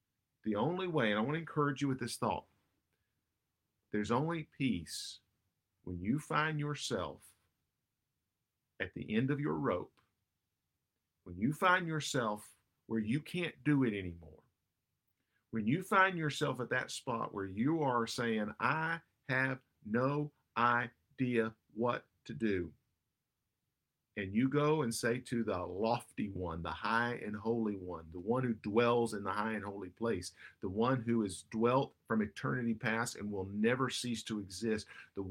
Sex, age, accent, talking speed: male, 50-69, American, 155 wpm